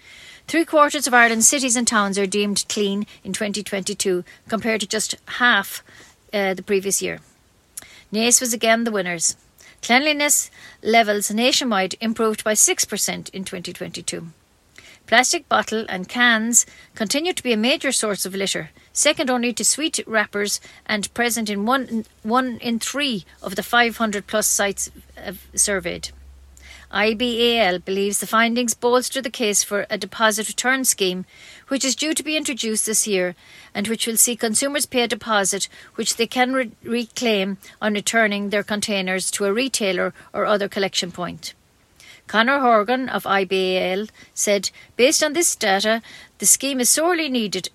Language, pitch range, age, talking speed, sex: English, 195-240 Hz, 40-59, 150 wpm, female